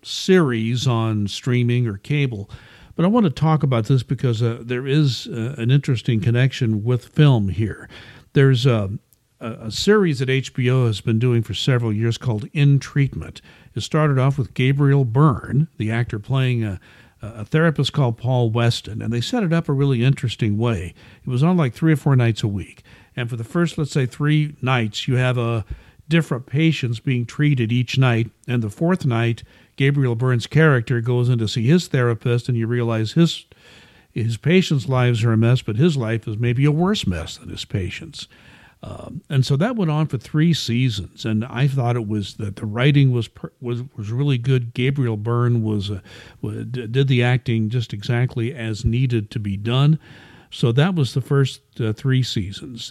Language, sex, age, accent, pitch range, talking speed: English, male, 50-69, American, 115-140 Hz, 195 wpm